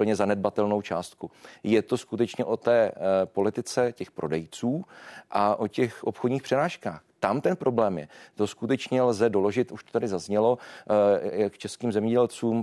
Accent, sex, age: native, male, 40-59